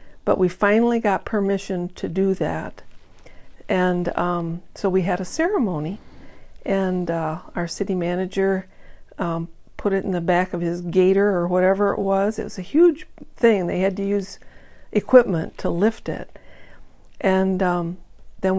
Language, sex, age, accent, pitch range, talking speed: English, female, 50-69, American, 180-205 Hz, 160 wpm